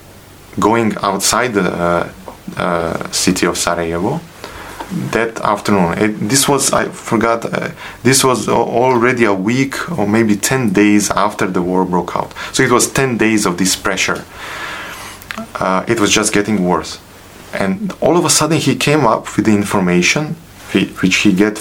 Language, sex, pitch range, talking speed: English, male, 95-115 Hz, 165 wpm